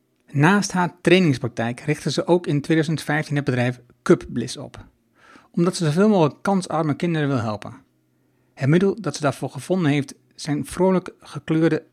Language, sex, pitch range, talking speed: Dutch, male, 130-165 Hz, 155 wpm